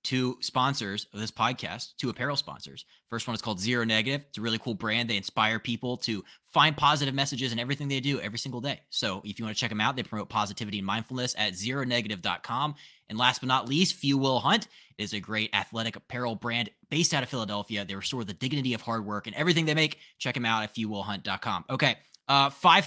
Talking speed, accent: 225 wpm, American